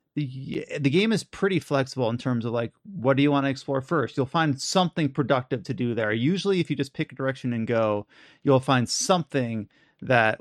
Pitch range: 125-150 Hz